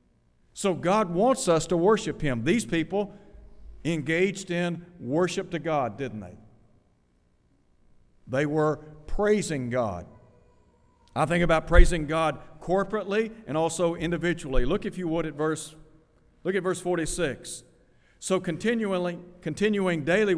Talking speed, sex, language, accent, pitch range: 125 wpm, male, English, American, 130-180 Hz